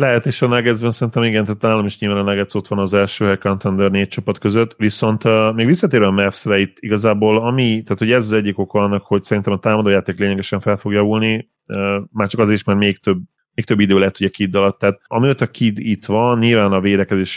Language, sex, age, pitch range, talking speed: Hungarian, male, 30-49, 90-110 Hz, 235 wpm